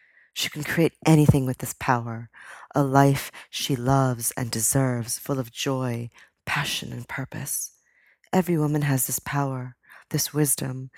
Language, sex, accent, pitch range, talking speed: English, female, American, 125-150 Hz, 140 wpm